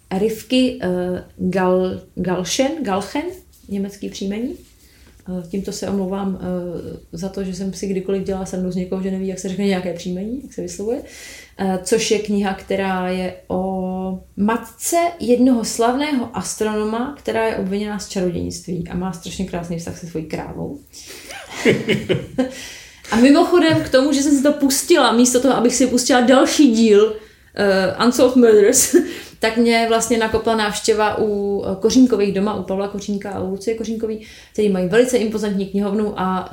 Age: 30-49